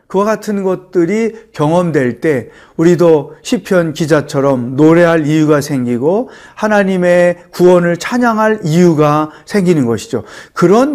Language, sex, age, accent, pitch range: Korean, male, 40-59, native, 145-190 Hz